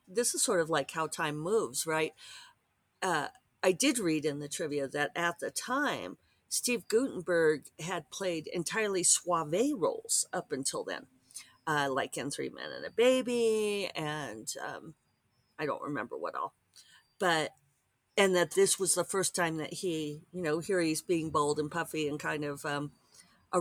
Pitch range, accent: 145-185 Hz, American